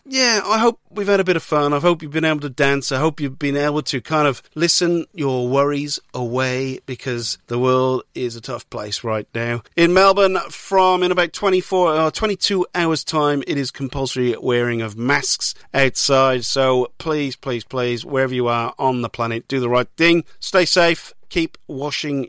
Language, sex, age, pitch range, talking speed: English, male, 40-59, 125-160 Hz, 195 wpm